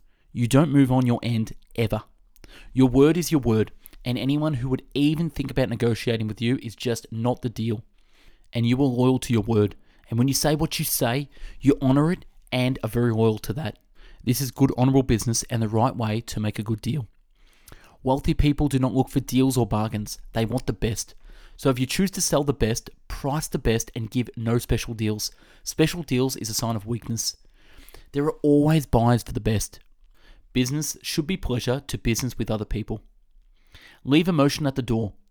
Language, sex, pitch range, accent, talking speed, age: English, male, 115-140 Hz, Australian, 205 wpm, 20-39